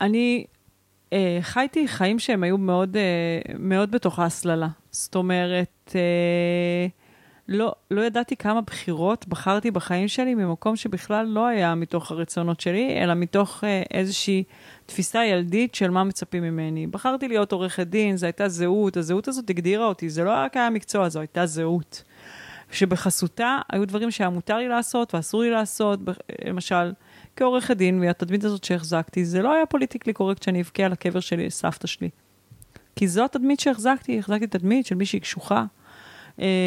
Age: 30-49